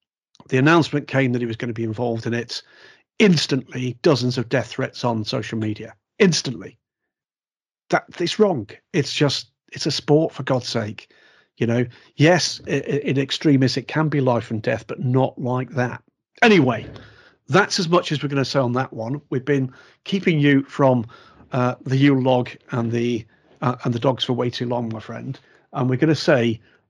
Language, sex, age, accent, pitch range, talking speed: English, male, 40-59, British, 120-145 Hz, 190 wpm